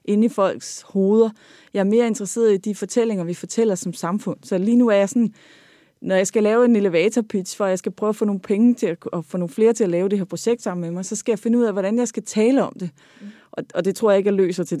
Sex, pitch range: female, 180-220 Hz